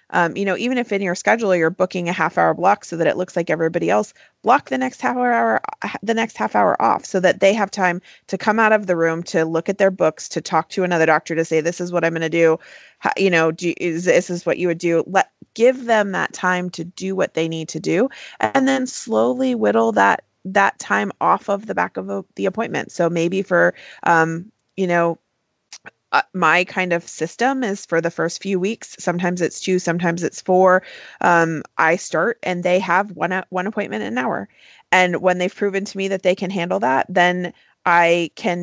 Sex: female